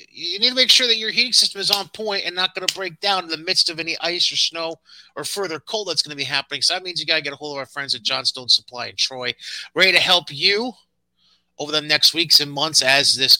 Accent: American